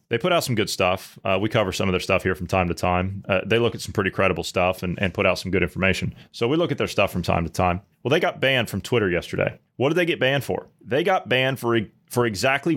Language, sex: English, male